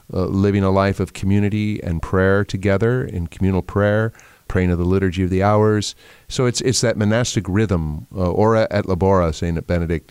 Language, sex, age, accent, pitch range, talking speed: English, male, 40-59, American, 90-105 Hz, 185 wpm